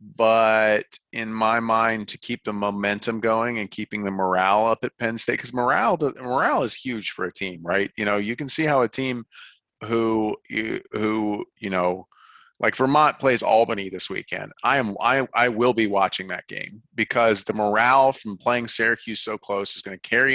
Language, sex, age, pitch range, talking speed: English, male, 30-49, 100-125 Hz, 200 wpm